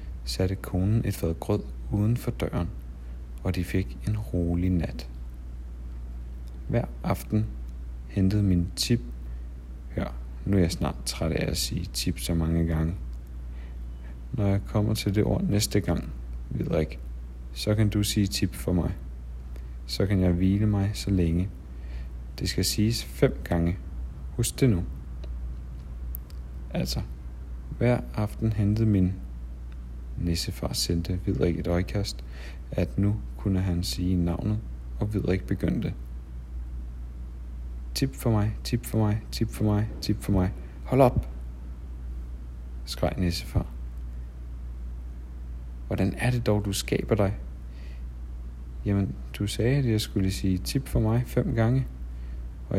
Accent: native